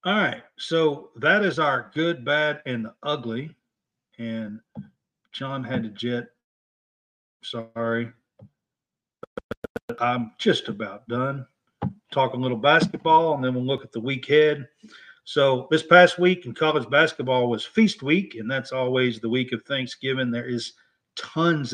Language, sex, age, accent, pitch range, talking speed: English, male, 50-69, American, 125-160 Hz, 145 wpm